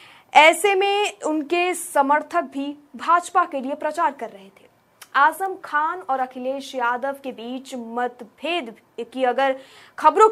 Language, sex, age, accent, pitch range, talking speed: Hindi, female, 20-39, native, 270-345 Hz, 140 wpm